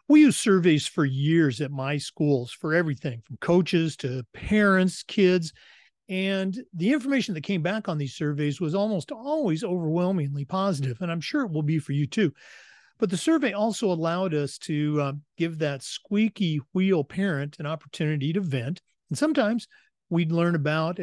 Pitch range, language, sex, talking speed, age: 150-190 Hz, English, male, 170 wpm, 40-59